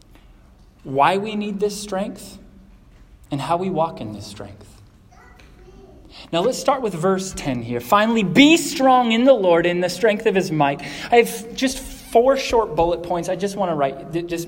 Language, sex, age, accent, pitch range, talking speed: English, male, 30-49, American, 155-210 Hz, 180 wpm